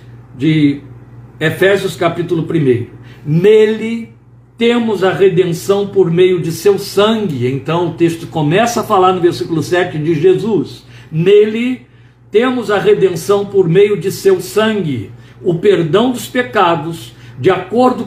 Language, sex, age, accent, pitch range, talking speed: Portuguese, male, 60-79, Brazilian, 130-205 Hz, 130 wpm